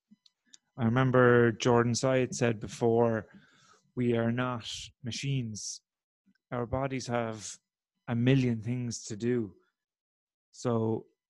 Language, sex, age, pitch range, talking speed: English, male, 30-49, 115-135 Hz, 100 wpm